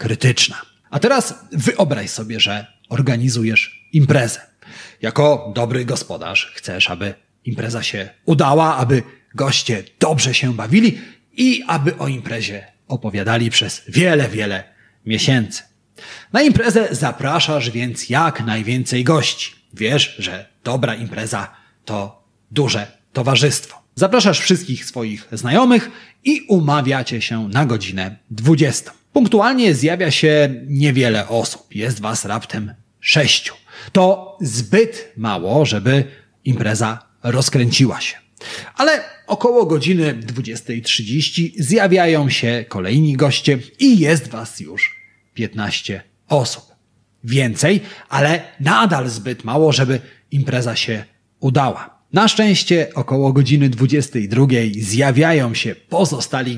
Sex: male